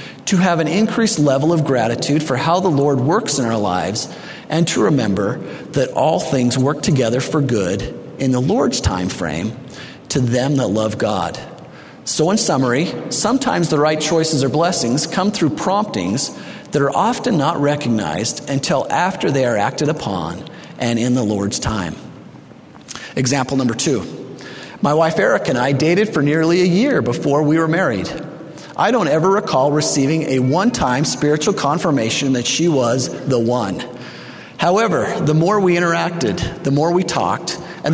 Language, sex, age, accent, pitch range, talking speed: English, male, 40-59, American, 130-170 Hz, 165 wpm